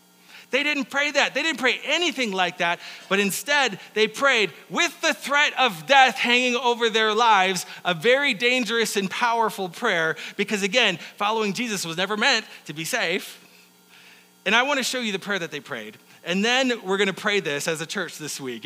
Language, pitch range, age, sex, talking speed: English, 155-240 Hz, 30-49, male, 200 wpm